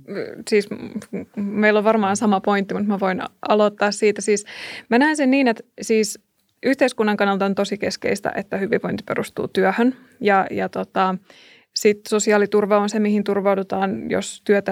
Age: 20-39